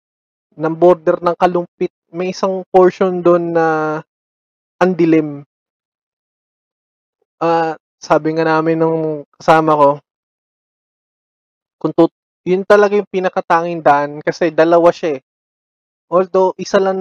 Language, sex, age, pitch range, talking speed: Filipino, male, 20-39, 150-180 Hz, 100 wpm